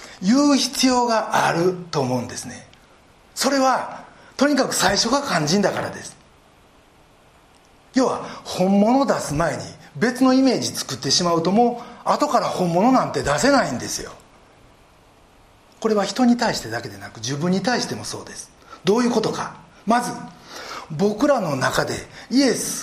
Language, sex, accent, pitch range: Japanese, male, native, 175-260 Hz